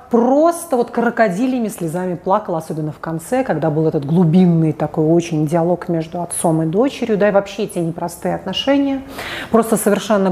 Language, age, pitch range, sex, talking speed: Russian, 30-49, 175-240 Hz, female, 155 wpm